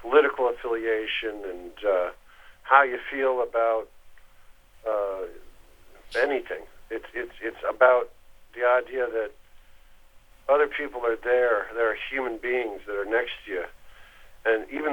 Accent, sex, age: American, male, 50-69